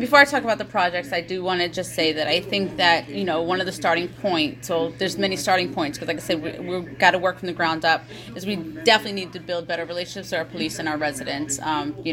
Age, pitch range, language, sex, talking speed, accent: 30-49, 165-205 Hz, English, female, 285 wpm, American